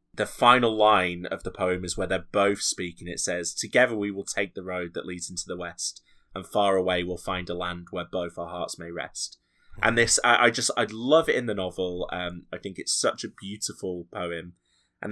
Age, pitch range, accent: 20-39, 90-105 Hz, British